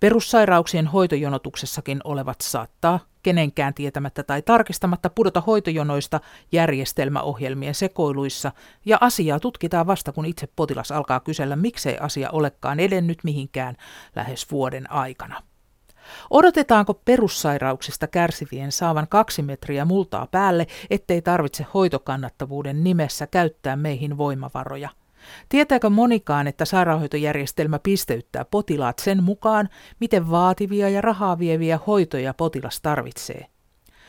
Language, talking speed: Finnish, 105 wpm